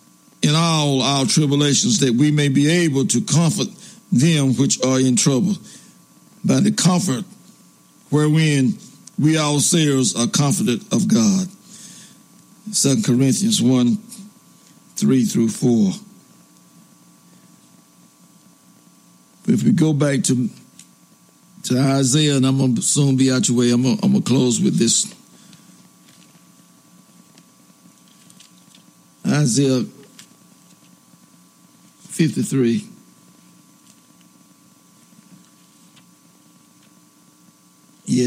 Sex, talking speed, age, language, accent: male, 90 wpm, 60-79, English, American